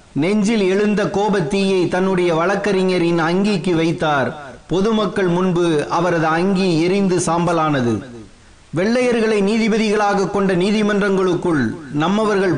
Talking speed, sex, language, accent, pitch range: 65 wpm, male, Tamil, native, 175-210 Hz